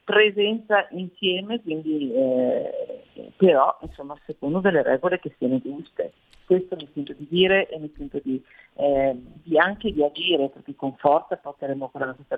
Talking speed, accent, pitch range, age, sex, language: 150 wpm, native, 140-185 Hz, 50-69, female, Italian